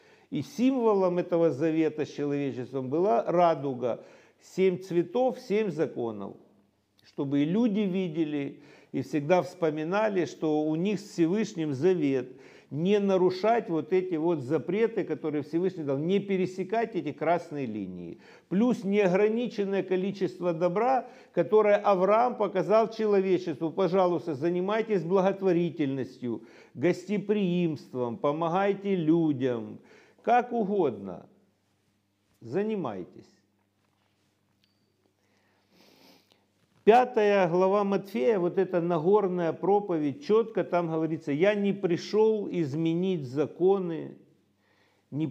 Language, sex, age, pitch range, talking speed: Russian, male, 50-69, 150-195 Hz, 95 wpm